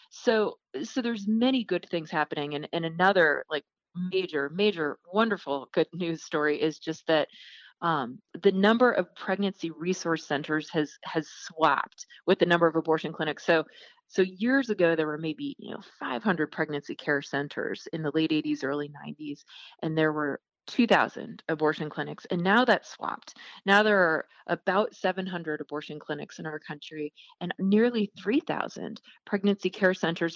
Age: 30-49